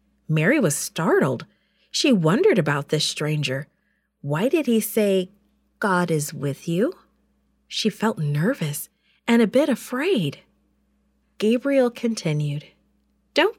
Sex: female